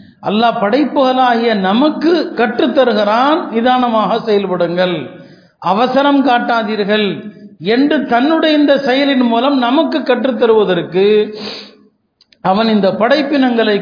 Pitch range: 205-245 Hz